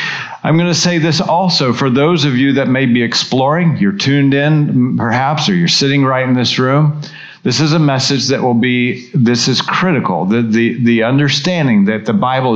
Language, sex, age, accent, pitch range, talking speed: English, male, 50-69, American, 120-150 Hz, 195 wpm